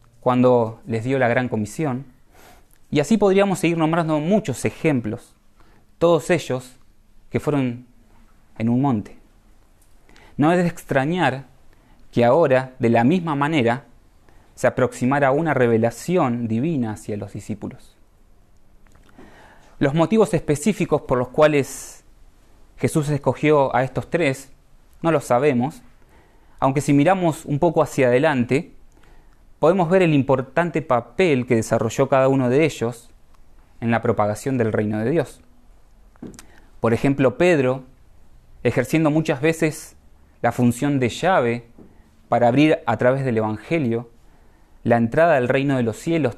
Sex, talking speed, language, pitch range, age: male, 130 wpm, Spanish, 110-150 Hz, 20-39